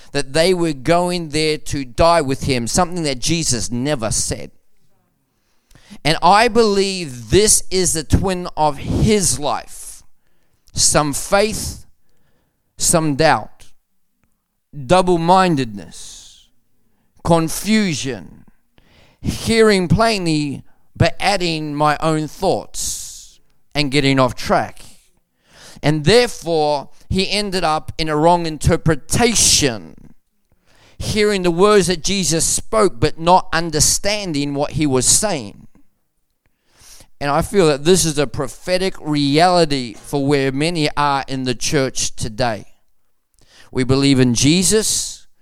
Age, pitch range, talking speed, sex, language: 40-59, 130-175 Hz, 110 wpm, male, English